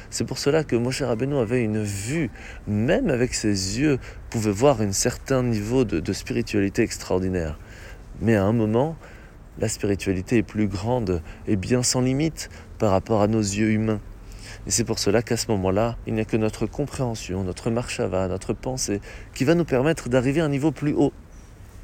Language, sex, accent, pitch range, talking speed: French, male, French, 95-120 Hz, 185 wpm